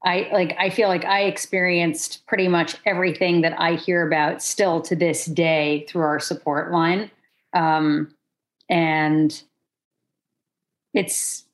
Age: 40-59